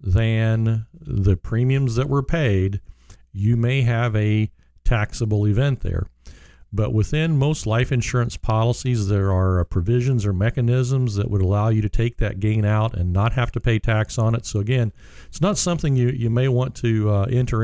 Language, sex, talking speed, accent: English, male, 180 wpm, American